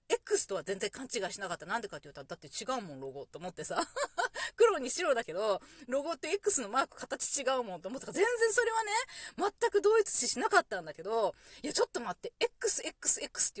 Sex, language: female, Japanese